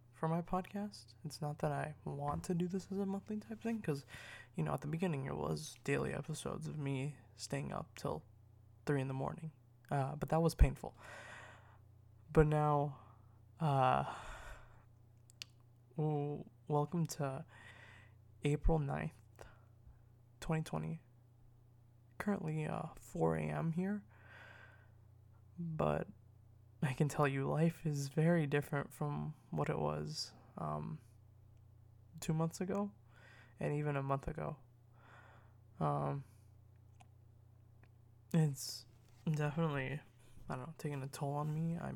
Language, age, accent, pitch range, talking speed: English, 20-39, American, 110-155 Hz, 125 wpm